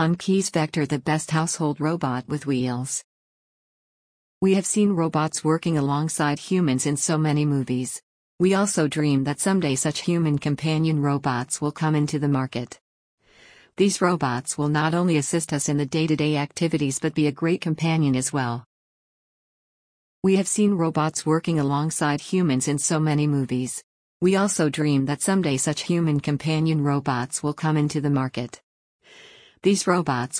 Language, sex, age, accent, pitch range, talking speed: English, female, 50-69, American, 145-165 Hz, 155 wpm